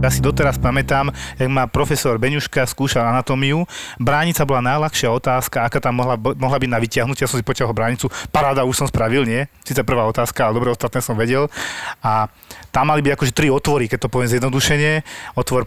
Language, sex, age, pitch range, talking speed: Slovak, male, 30-49, 120-145 Hz, 195 wpm